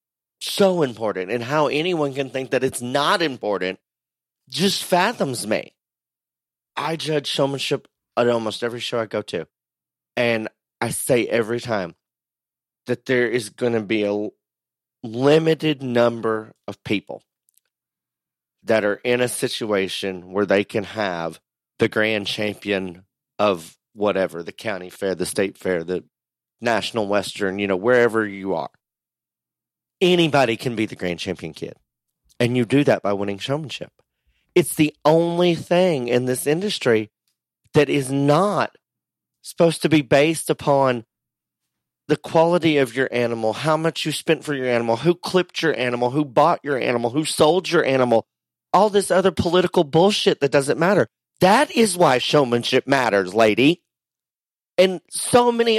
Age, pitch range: 30-49, 110-155 Hz